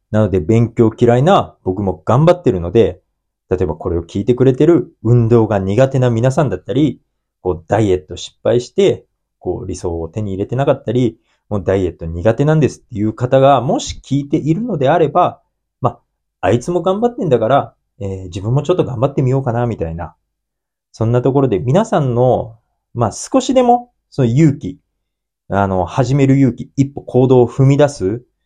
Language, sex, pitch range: Japanese, male, 100-145 Hz